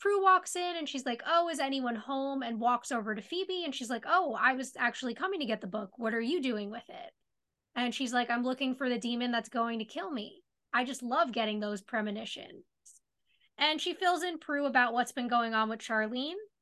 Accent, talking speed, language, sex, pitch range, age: American, 230 wpm, English, female, 225-290 Hz, 10-29